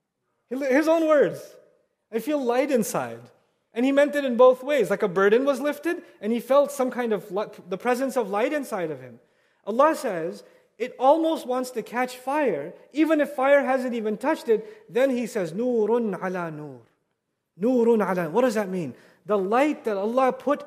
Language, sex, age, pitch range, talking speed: English, male, 30-49, 210-300 Hz, 190 wpm